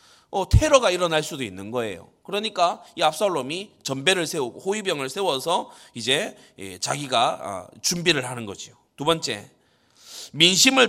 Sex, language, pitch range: male, Korean, 135-205 Hz